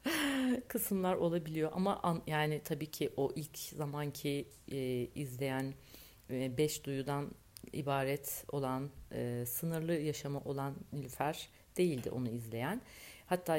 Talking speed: 115 wpm